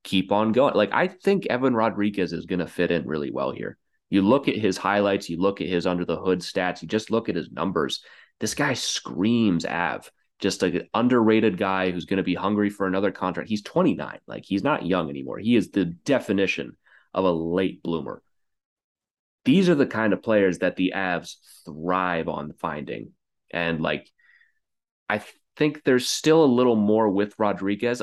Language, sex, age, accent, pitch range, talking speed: English, male, 30-49, American, 85-105 Hz, 195 wpm